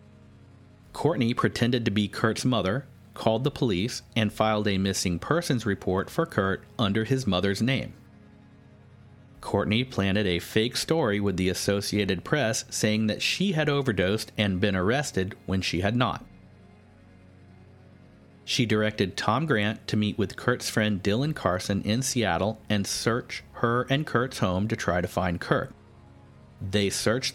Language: English